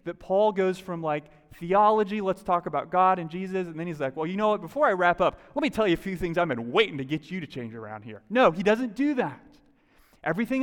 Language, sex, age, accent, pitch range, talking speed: English, male, 30-49, American, 135-195 Hz, 265 wpm